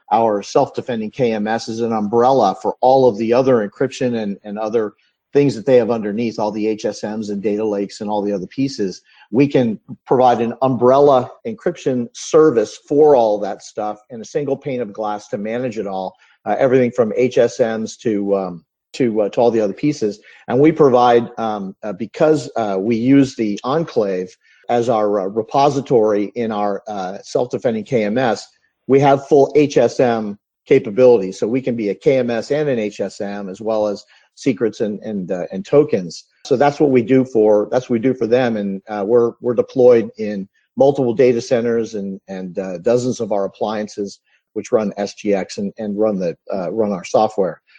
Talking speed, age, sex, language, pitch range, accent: 185 wpm, 50-69, male, English, 105-130 Hz, American